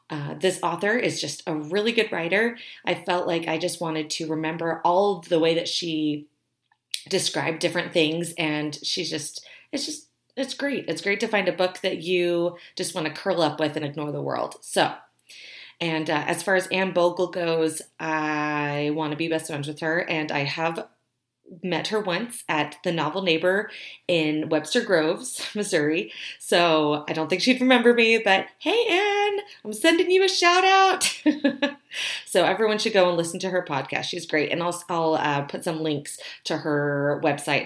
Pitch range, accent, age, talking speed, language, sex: 155-190 Hz, American, 30-49, 190 wpm, English, female